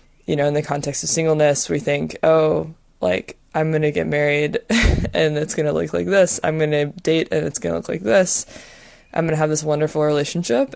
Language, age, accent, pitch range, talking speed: English, 20-39, American, 145-160 Hz, 230 wpm